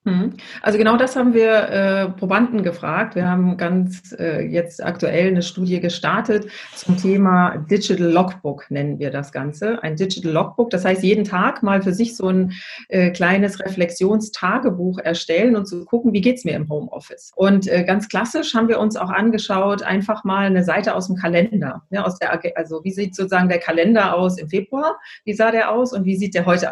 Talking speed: 200 wpm